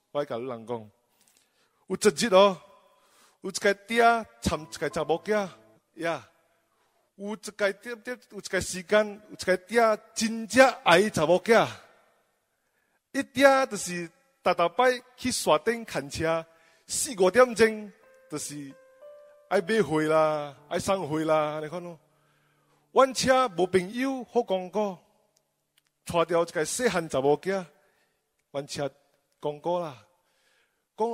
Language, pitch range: English, 170-240 Hz